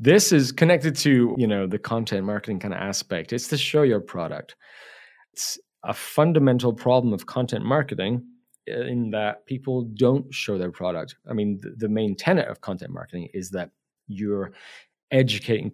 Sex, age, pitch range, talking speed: male, 40-59, 95-125 Hz, 155 wpm